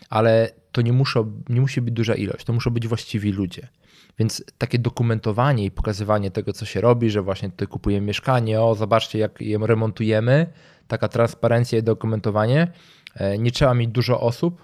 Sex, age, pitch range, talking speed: male, 20-39, 105-125 Hz, 170 wpm